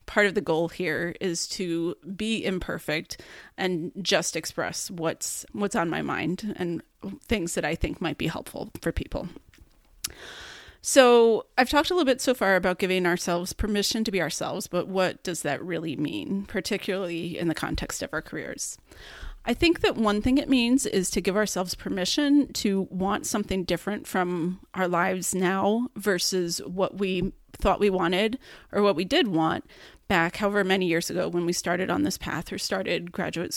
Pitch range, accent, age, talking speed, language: 175-215 Hz, American, 30-49, 180 wpm, English